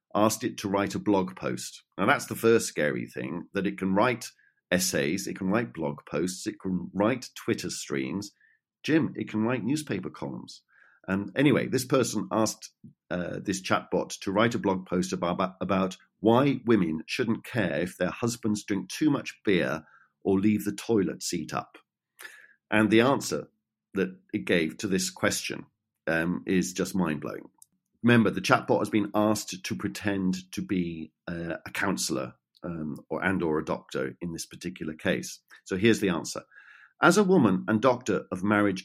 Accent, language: British, English